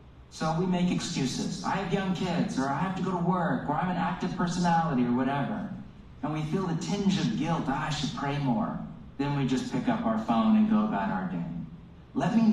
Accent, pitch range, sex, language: American, 155-220 Hz, male, English